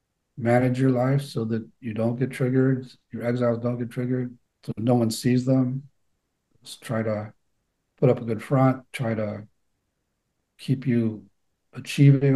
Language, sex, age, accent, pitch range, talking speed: English, male, 50-69, American, 110-125 Hz, 150 wpm